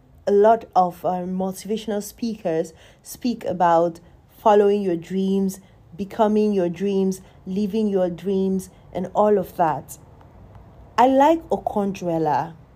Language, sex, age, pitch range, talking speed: English, female, 30-49, 170-210 Hz, 115 wpm